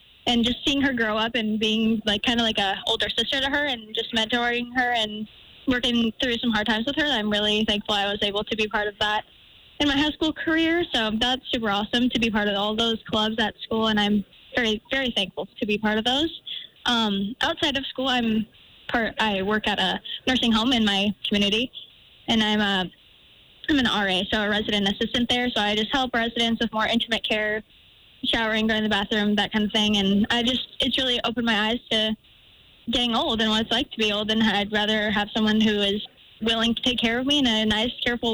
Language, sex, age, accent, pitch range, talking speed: English, female, 10-29, American, 215-240 Hz, 230 wpm